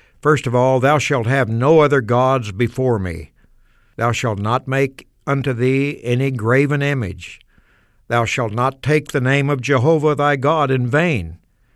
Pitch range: 115-150 Hz